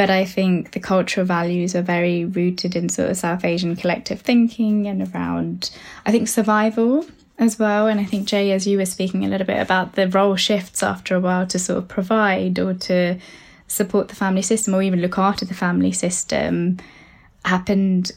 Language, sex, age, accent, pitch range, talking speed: English, female, 10-29, British, 180-200 Hz, 195 wpm